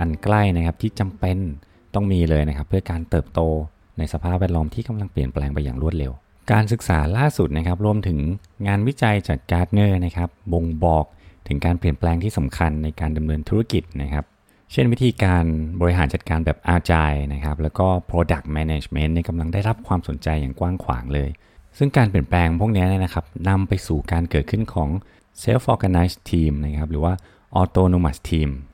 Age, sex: 20-39, male